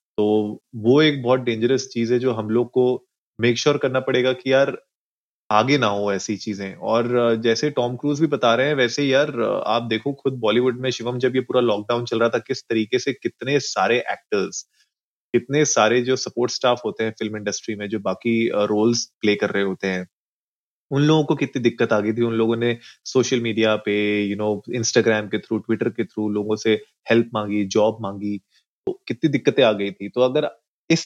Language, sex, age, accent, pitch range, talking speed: Hindi, male, 30-49, native, 110-135 Hz, 205 wpm